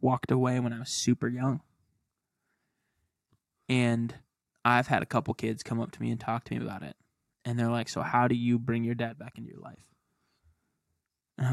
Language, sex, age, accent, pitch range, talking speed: English, male, 20-39, American, 115-130 Hz, 200 wpm